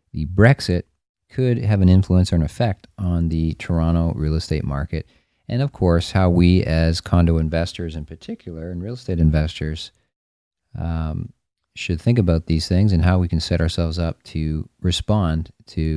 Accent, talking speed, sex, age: American, 170 wpm, male, 40-59